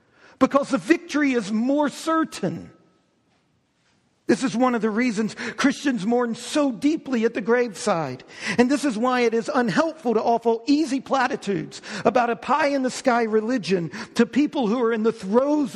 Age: 50-69